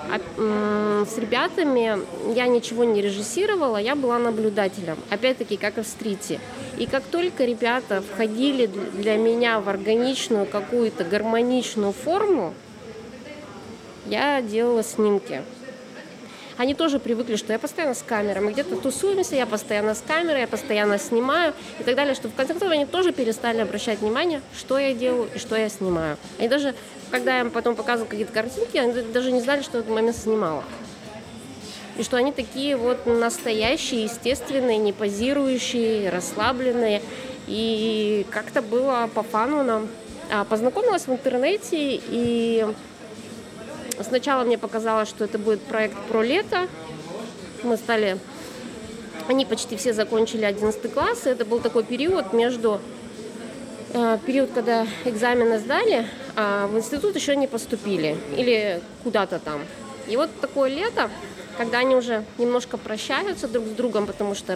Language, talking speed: Russian, 140 wpm